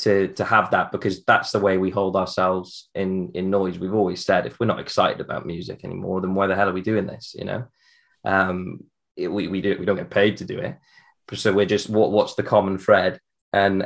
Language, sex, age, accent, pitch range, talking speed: English, male, 20-39, British, 95-105 Hz, 240 wpm